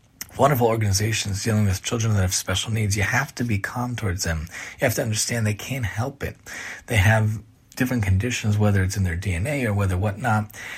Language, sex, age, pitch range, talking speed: English, male, 30-49, 100-125 Hz, 200 wpm